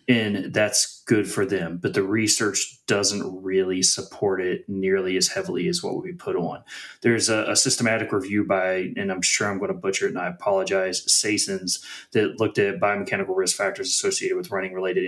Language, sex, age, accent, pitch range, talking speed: English, male, 30-49, American, 100-125 Hz, 190 wpm